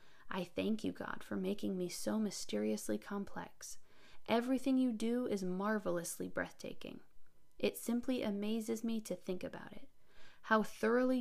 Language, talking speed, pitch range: English, 140 wpm, 180-225 Hz